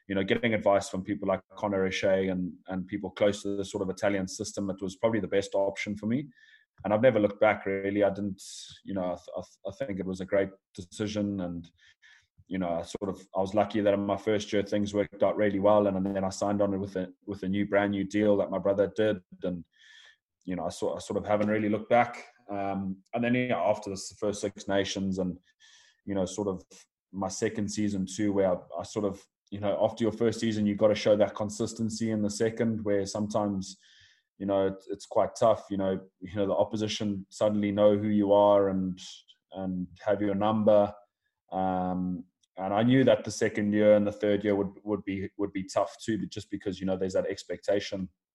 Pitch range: 95-105 Hz